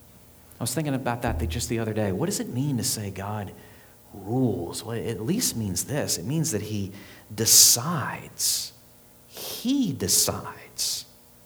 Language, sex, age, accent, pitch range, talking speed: English, male, 40-59, American, 90-150 Hz, 155 wpm